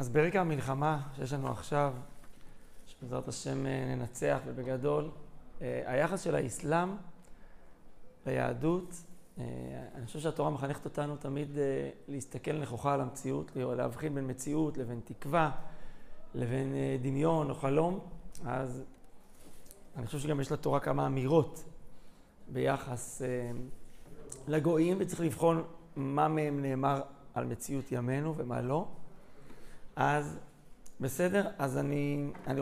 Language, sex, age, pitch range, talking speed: Hebrew, male, 40-59, 130-155 Hz, 105 wpm